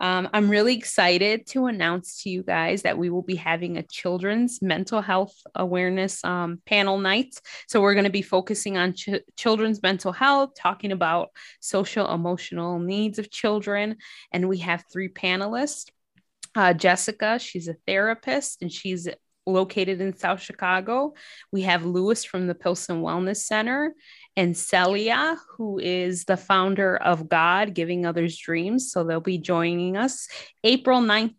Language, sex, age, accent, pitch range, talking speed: English, female, 20-39, American, 180-225 Hz, 155 wpm